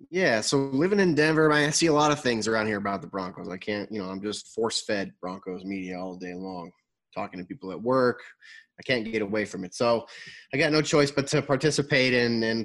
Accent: American